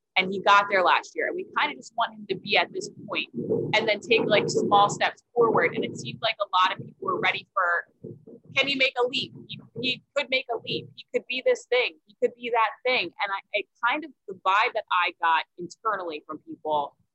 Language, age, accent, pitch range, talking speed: English, 20-39, American, 180-250 Hz, 245 wpm